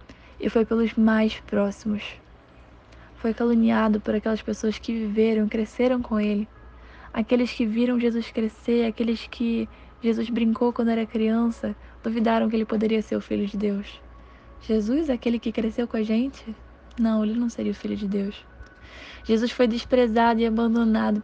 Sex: female